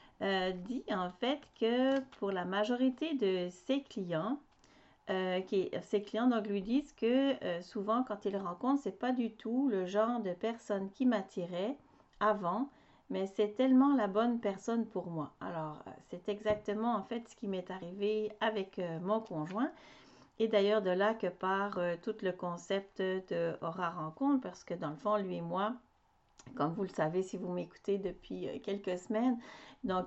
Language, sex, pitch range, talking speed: French, female, 185-230 Hz, 180 wpm